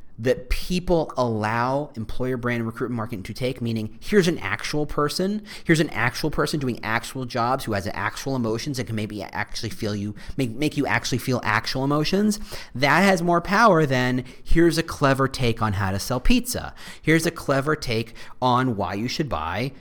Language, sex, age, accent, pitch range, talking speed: English, male, 40-59, American, 110-160 Hz, 185 wpm